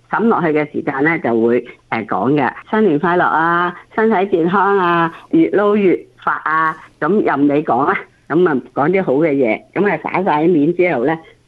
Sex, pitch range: female, 130-180 Hz